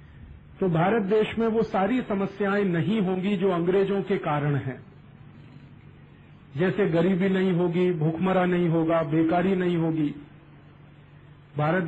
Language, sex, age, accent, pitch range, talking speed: Hindi, male, 40-59, native, 170-195 Hz, 125 wpm